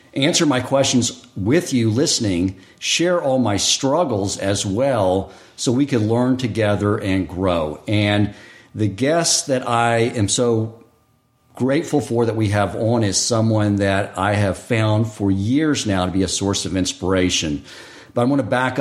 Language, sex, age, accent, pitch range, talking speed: English, male, 50-69, American, 105-135 Hz, 165 wpm